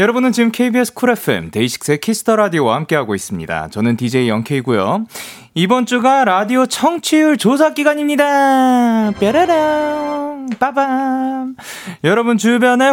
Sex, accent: male, native